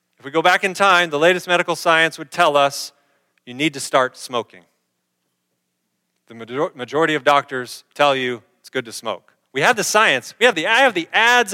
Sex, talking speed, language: male, 185 wpm, English